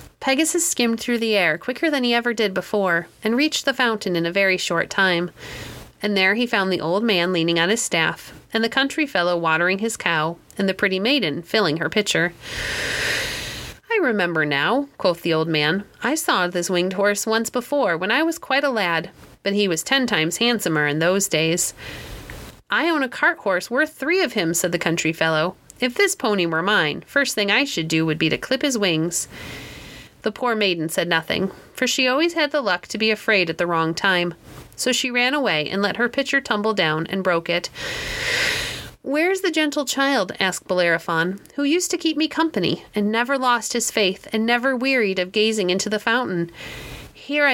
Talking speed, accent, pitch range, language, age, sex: 200 wpm, American, 175-260 Hz, English, 30-49, female